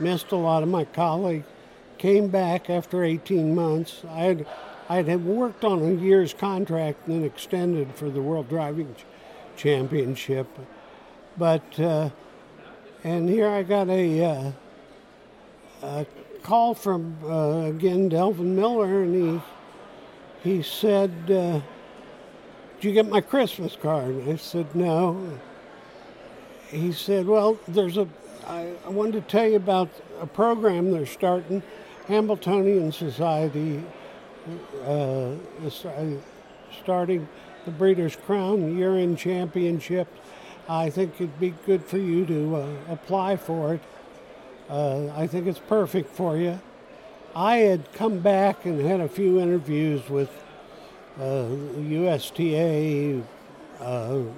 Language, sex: English, male